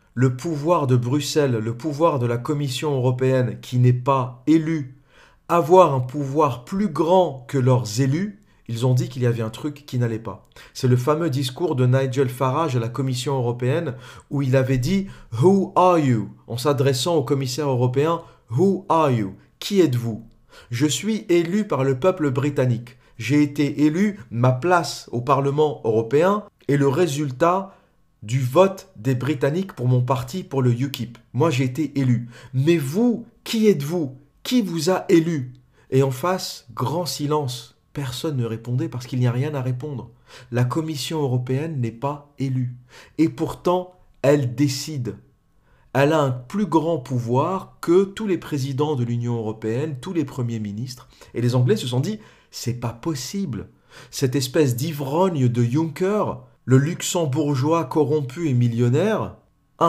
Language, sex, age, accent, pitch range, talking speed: French, male, 40-59, French, 125-165 Hz, 170 wpm